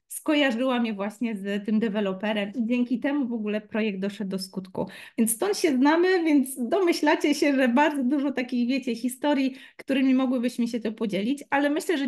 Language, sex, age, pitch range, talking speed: Polish, female, 30-49, 215-275 Hz, 180 wpm